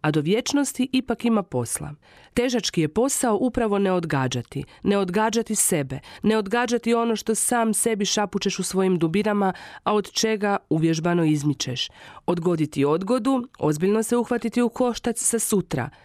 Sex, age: female, 40-59